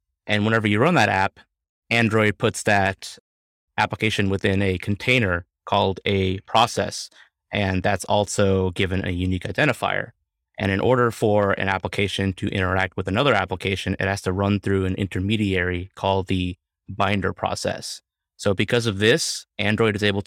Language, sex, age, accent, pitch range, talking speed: English, male, 20-39, American, 95-105 Hz, 155 wpm